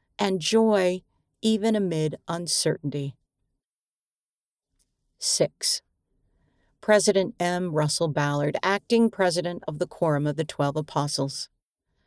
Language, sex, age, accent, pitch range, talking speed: English, female, 50-69, American, 150-215 Hz, 95 wpm